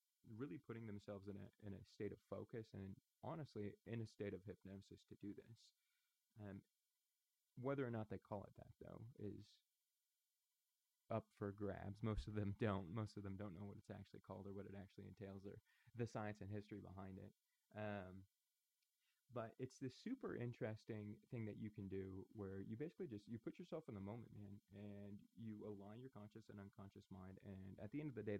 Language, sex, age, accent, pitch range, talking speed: English, male, 20-39, American, 100-115 Hz, 200 wpm